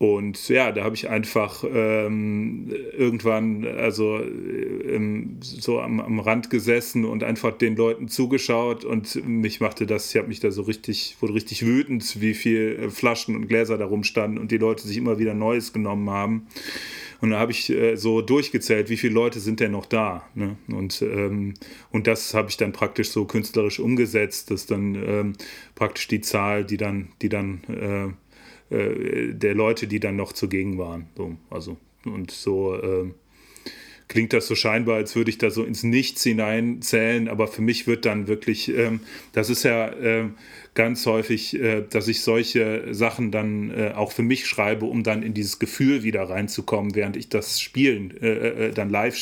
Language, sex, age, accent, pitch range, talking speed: German, male, 30-49, German, 105-115 Hz, 180 wpm